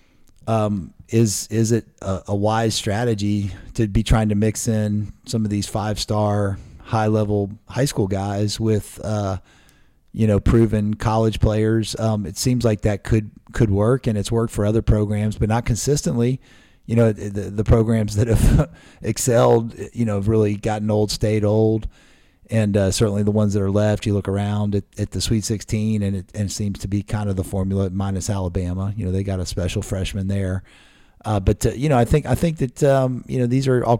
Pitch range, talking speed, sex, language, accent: 100-110 Hz, 205 wpm, male, English, American